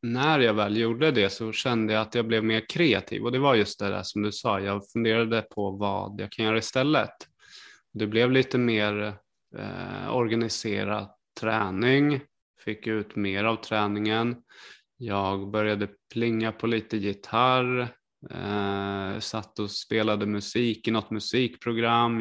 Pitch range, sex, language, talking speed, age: 105-125 Hz, male, Swedish, 145 wpm, 20-39